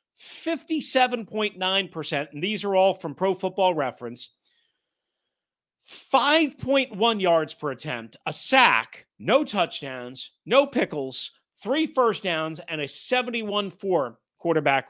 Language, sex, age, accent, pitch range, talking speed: English, male, 40-59, American, 170-255 Hz, 100 wpm